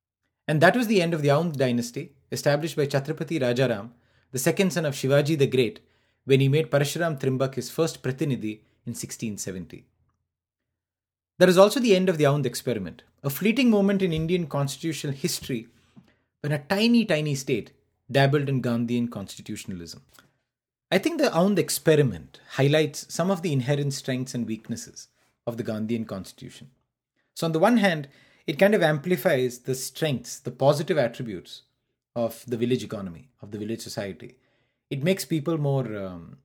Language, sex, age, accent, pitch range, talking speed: English, male, 30-49, Indian, 120-155 Hz, 165 wpm